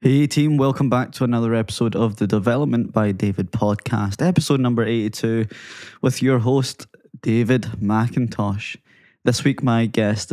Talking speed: 145 wpm